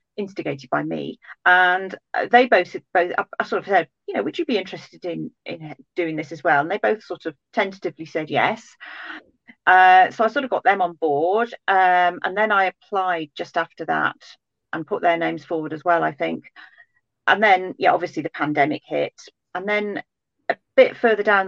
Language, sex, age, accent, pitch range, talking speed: English, female, 40-59, British, 165-210 Hz, 195 wpm